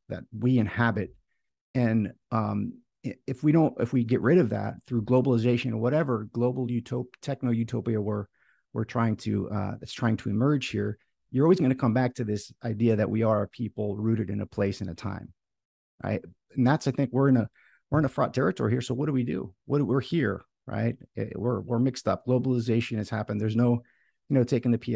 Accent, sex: American, male